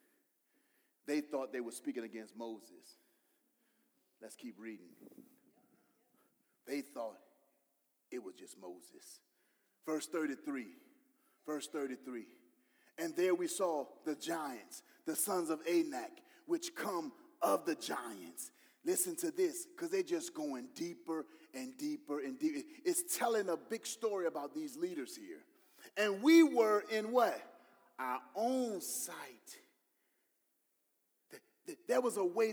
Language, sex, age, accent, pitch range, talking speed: English, male, 30-49, American, 205-340 Hz, 125 wpm